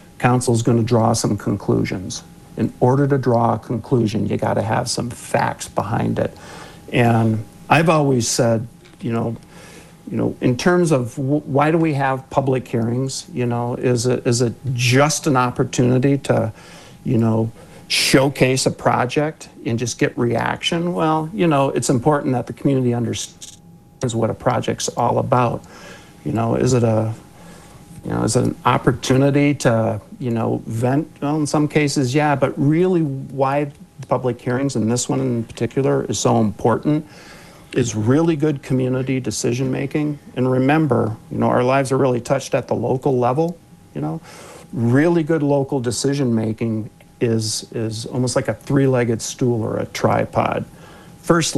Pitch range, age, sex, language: 115-145 Hz, 50-69, male, English